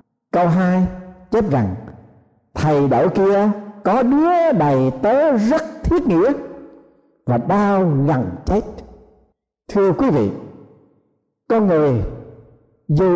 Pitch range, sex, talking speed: 150-240 Hz, male, 110 wpm